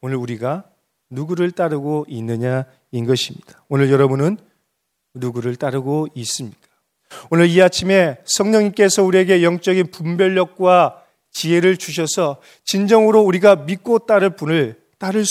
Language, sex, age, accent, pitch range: Korean, male, 30-49, native, 130-185 Hz